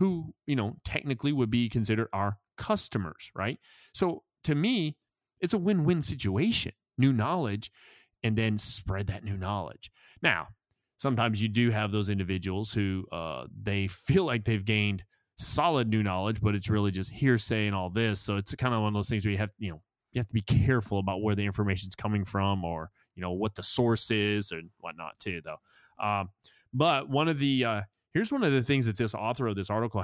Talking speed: 205 wpm